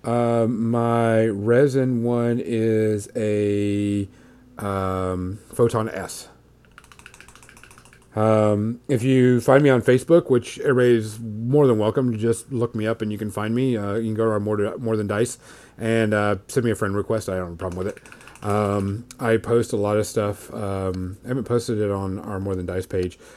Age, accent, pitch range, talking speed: 40-59, American, 100-125 Hz, 185 wpm